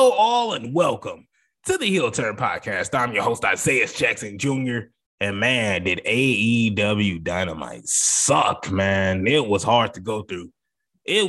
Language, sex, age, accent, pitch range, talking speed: English, male, 20-39, American, 125-200 Hz, 155 wpm